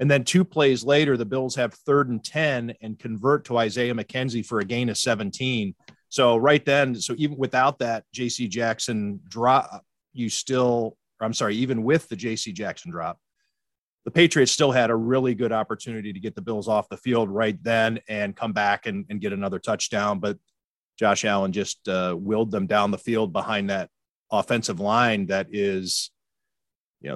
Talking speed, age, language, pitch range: 185 wpm, 40-59, English, 110-135 Hz